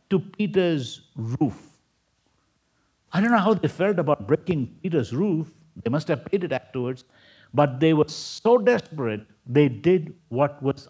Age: 60-79